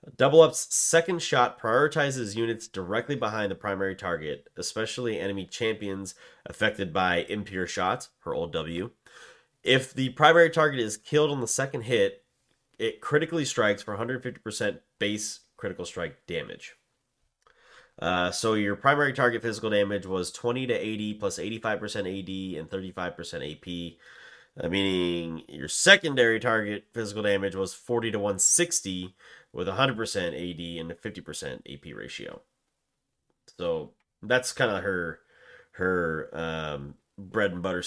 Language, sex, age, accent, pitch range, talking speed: English, male, 30-49, American, 90-125 Hz, 135 wpm